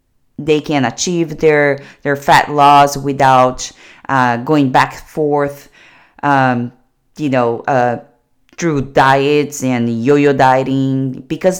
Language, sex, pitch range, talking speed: English, female, 130-160 Hz, 125 wpm